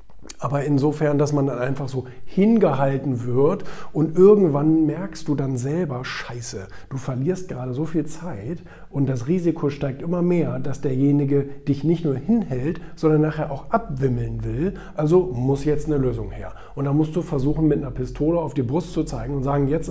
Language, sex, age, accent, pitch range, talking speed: German, male, 50-69, German, 125-155 Hz, 185 wpm